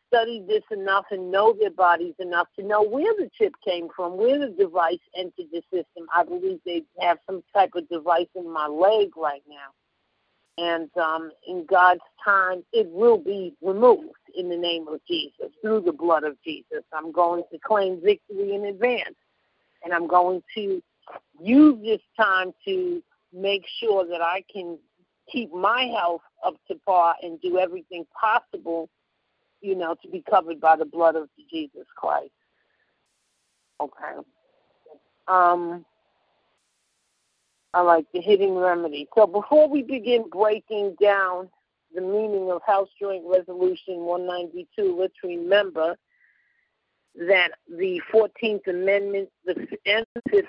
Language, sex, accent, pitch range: English, female, American, 175-220 Hz